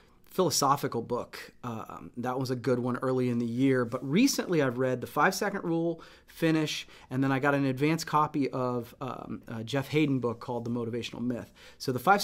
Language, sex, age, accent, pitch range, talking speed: English, male, 30-49, American, 120-145 Hz, 195 wpm